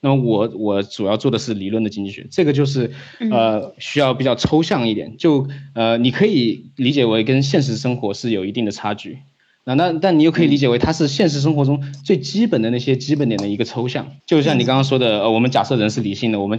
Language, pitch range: Chinese, 105-135 Hz